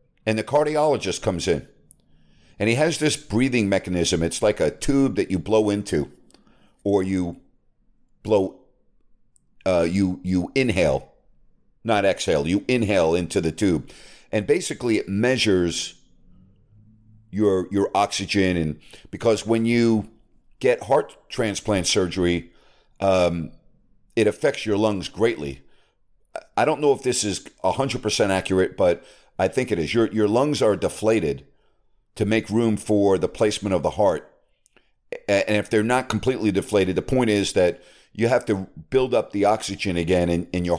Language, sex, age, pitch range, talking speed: English, male, 50-69, 95-115 Hz, 155 wpm